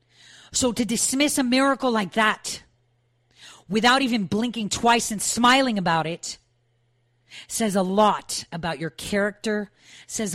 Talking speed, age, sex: 130 wpm, 40-59, female